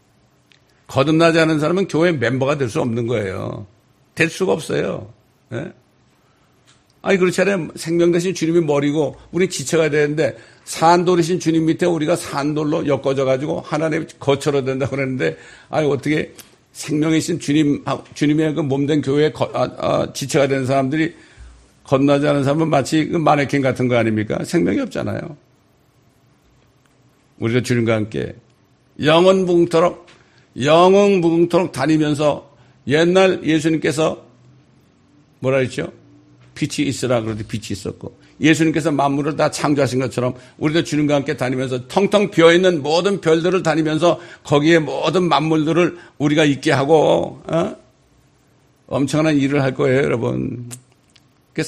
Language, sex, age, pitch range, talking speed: English, male, 60-79, 130-160 Hz, 120 wpm